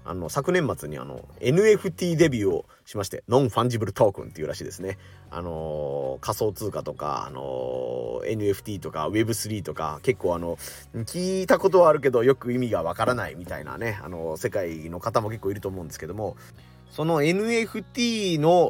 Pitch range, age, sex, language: 90-145 Hz, 30-49, male, Japanese